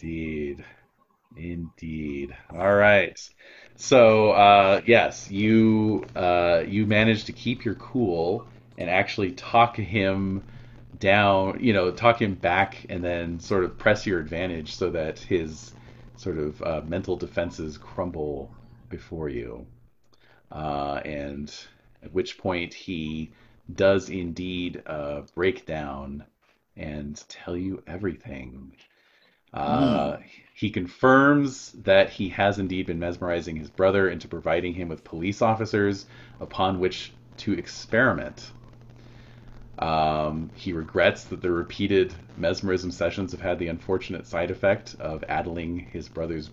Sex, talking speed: male, 125 wpm